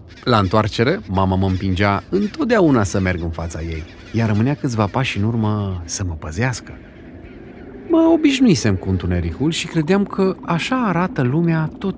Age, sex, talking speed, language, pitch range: 40-59, male, 155 wpm, Romanian, 95-155 Hz